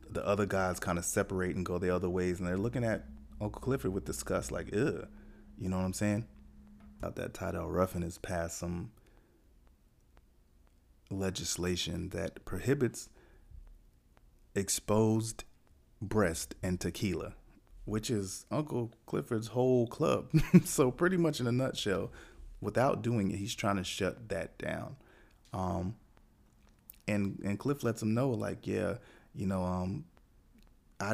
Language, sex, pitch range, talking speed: English, male, 90-115 Hz, 140 wpm